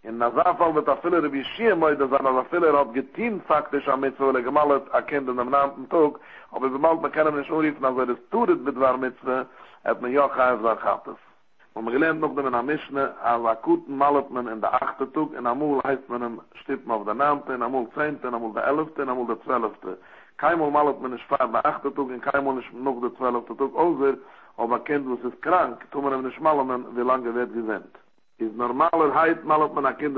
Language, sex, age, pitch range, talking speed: English, male, 60-79, 125-150 Hz, 70 wpm